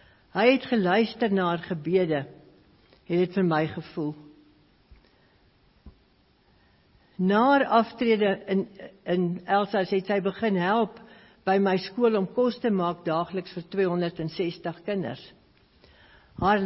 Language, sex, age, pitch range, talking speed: English, female, 60-79, 165-210 Hz, 125 wpm